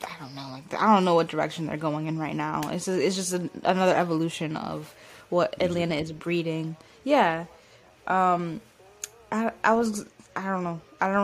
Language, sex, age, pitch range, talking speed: English, female, 10-29, 160-180 Hz, 190 wpm